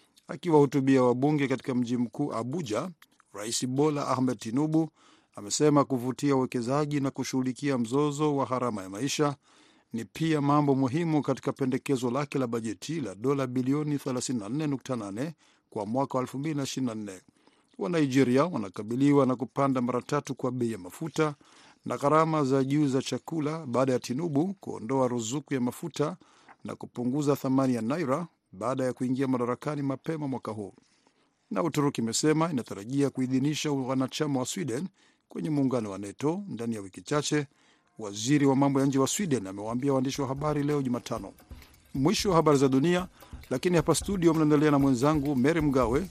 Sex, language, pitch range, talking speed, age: male, Swahili, 125-150 Hz, 150 wpm, 50-69